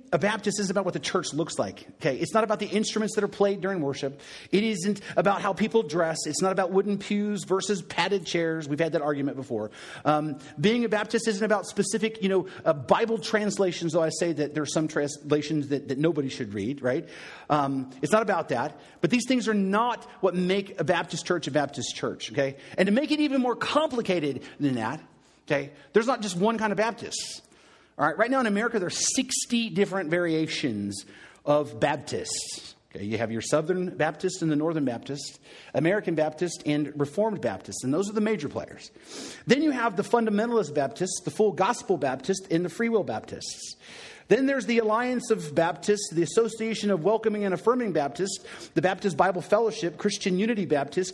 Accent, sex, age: American, male, 40-59